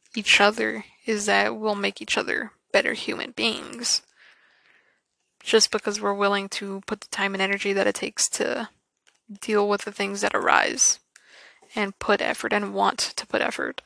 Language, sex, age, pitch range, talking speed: English, female, 20-39, 200-225 Hz, 170 wpm